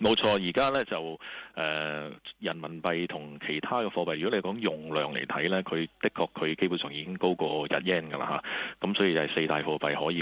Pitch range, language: 80-95 Hz, Chinese